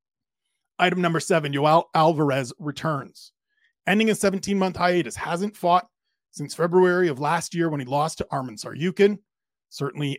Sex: male